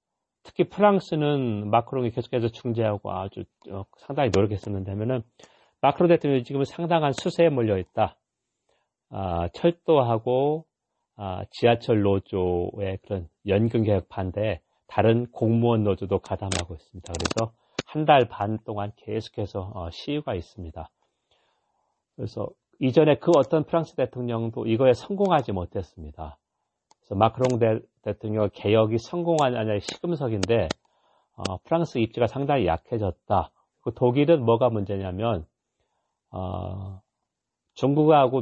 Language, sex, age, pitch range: Korean, male, 40-59, 100-135 Hz